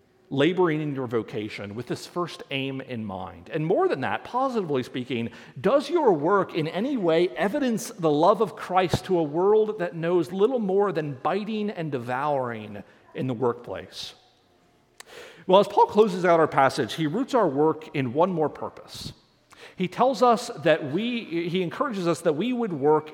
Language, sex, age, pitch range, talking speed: English, male, 40-59, 135-200 Hz, 175 wpm